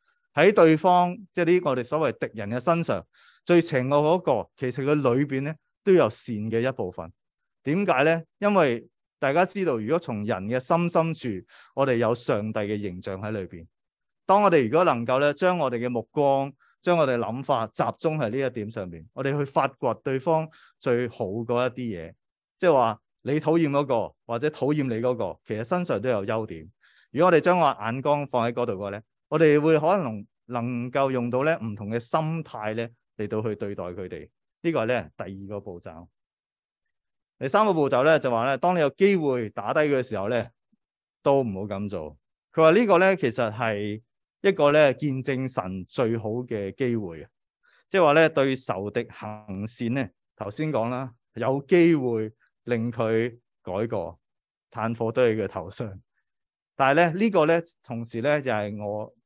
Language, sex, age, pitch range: English, male, 30-49, 110-155 Hz